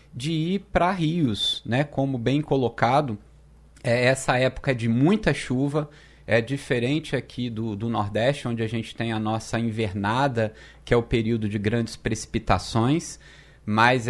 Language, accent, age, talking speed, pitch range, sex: Portuguese, Brazilian, 20-39, 145 wpm, 115-145 Hz, male